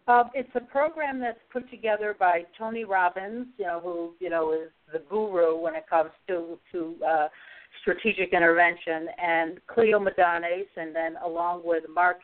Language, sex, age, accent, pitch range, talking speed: English, female, 60-79, American, 165-215 Hz, 165 wpm